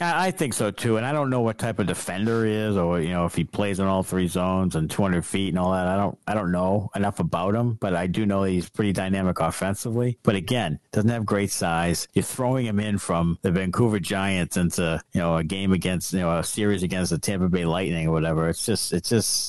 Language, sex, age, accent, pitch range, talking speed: English, male, 50-69, American, 95-125 Hz, 250 wpm